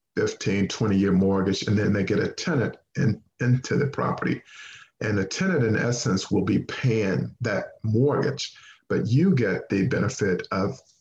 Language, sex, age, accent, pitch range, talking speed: English, male, 50-69, American, 95-120 Hz, 160 wpm